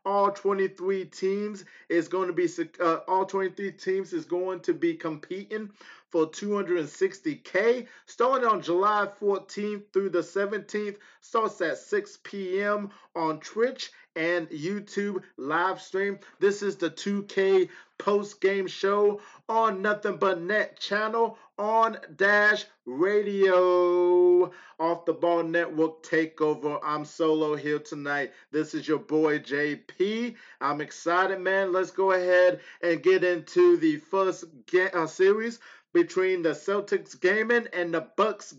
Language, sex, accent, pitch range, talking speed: English, male, American, 160-210 Hz, 130 wpm